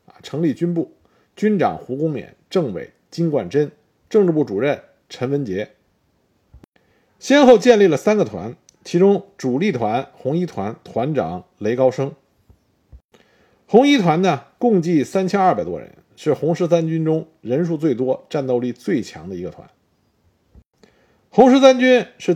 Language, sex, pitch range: Chinese, male, 140-210 Hz